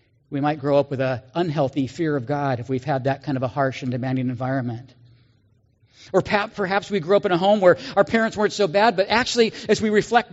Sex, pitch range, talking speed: male, 135-185 Hz, 230 wpm